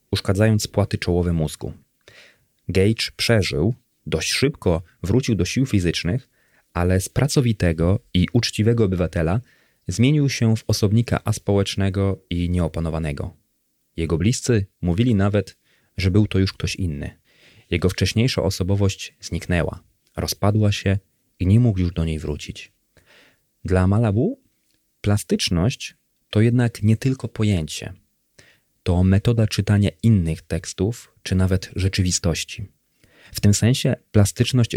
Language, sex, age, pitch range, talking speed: Polish, male, 30-49, 90-110 Hz, 115 wpm